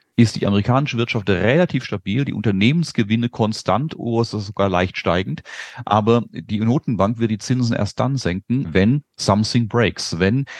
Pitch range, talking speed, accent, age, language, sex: 100-125 Hz, 160 wpm, German, 40-59, German, male